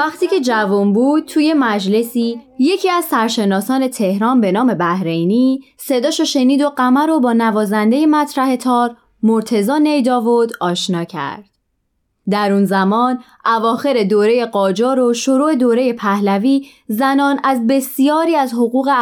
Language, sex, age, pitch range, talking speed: Persian, female, 20-39, 195-270 Hz, 135 wpm